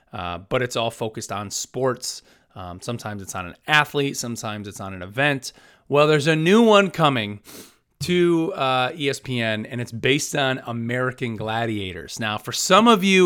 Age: 30-49